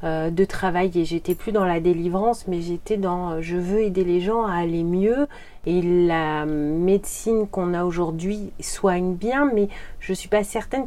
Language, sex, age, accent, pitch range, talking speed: French, female, 40-59, French, 170-205 Hz, 175 wpm